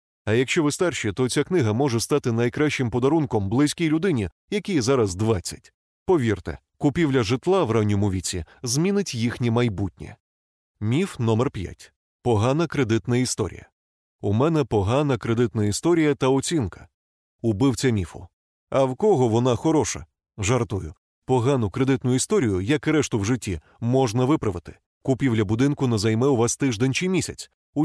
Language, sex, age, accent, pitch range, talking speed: Ukrainian, male, 30-49, native, 105-140 Hz, 140 wpm